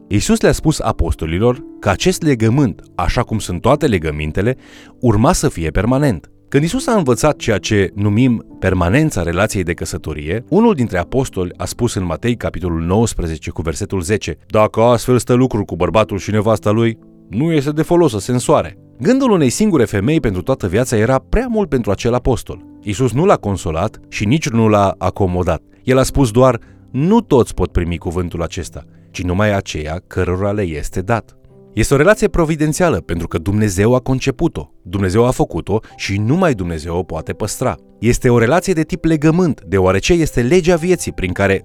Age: 30-49